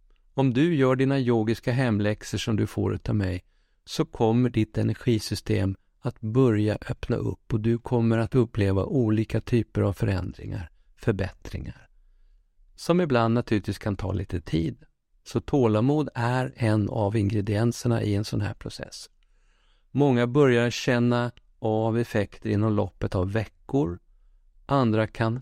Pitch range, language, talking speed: 100-120 Hz, Swedish, 135 wpm